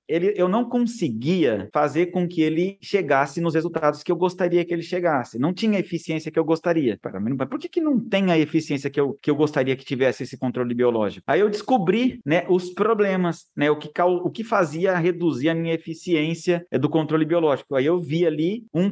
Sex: male